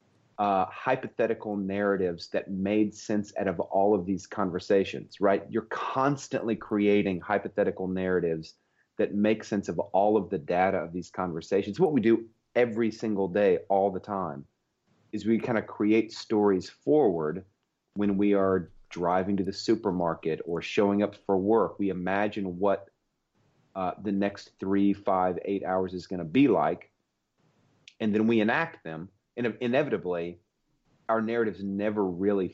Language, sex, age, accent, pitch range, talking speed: English, male, 30-49, American, 95-110 Hz, 155 wpm